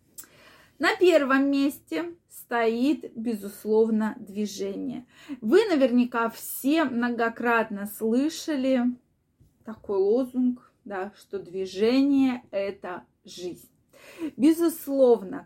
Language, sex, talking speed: Russian, female, 80 wpm